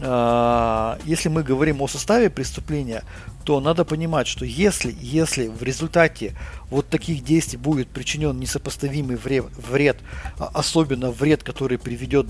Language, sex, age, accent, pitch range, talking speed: Russian, male, 50-69, native, 115-140 Hz, 120 wpm